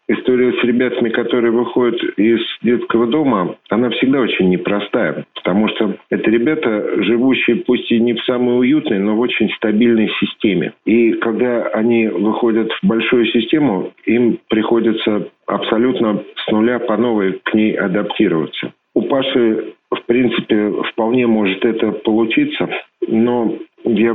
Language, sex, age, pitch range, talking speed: Russian, male, 50-69, 105-120 Hz, 135 wpm